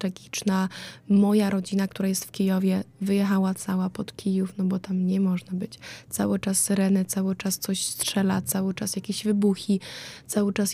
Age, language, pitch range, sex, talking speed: 20-39, Polish, 185-205 Hz, female, 170 wpm